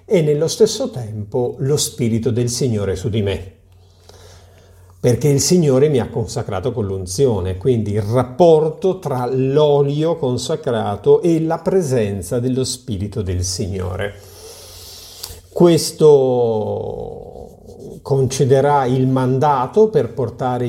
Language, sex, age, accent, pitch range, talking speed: Italian, male, 50-69, native, 110-160 Hz, 110 wpm